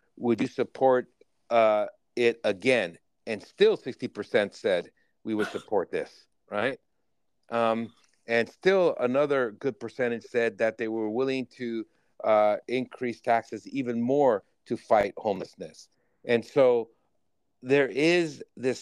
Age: 50-69